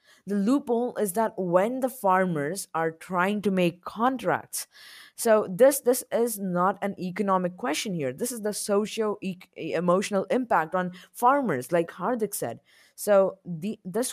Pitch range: 175-210 Hz